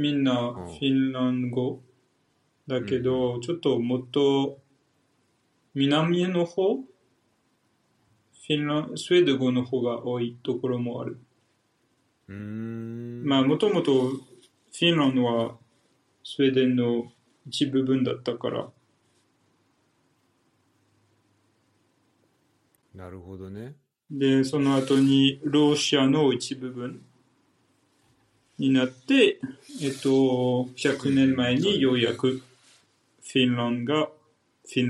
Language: Japanese